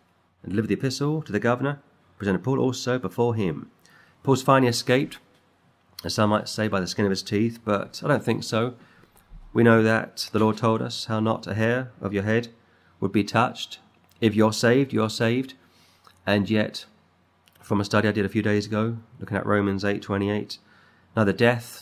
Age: 30-49